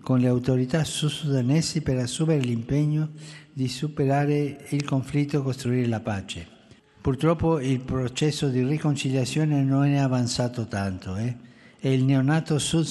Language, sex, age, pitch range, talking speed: Italian, male, 60-79, 110-145 Hz, 140 wpm